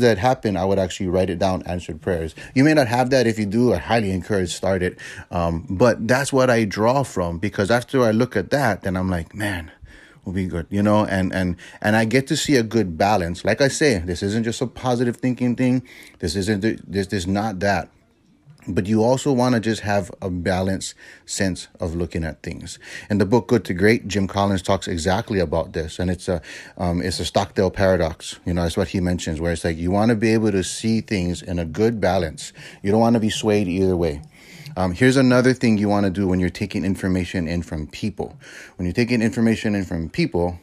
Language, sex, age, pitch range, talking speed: English, male, 30-49, 90-115 Hz, 230 wpm